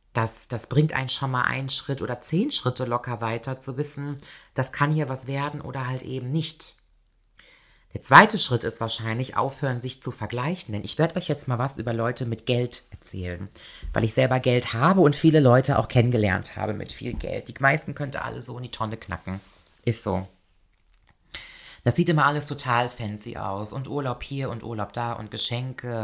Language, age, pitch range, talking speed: German, 30-49, 105-125 Hz, 195 wpm